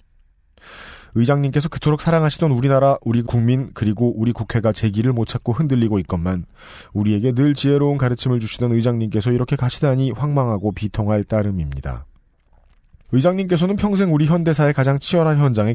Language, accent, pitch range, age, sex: Korean, native, 100-130 Hz, 40-59, male